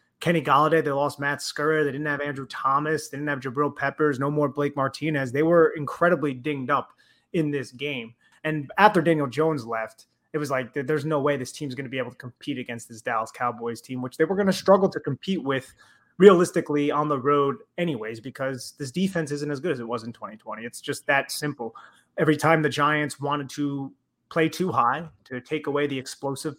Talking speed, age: 215 wpm, 20-39